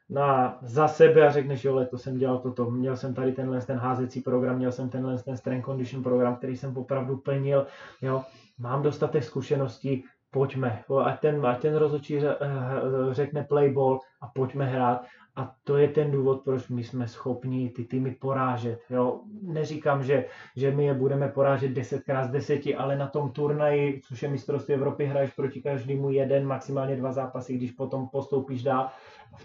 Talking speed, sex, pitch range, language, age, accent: 175 wpm, male, 130-145 Hz, Czech, 20-39, native